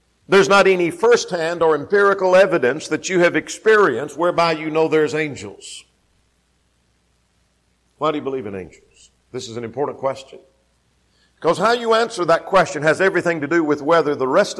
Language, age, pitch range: English, 50-69, 120-195 Hz